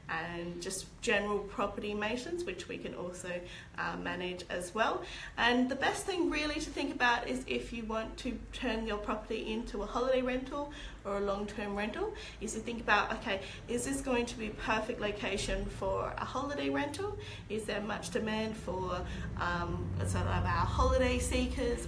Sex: female